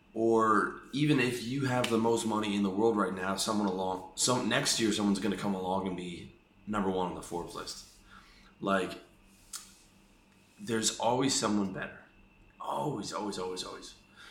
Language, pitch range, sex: English, 90-110 Hz, male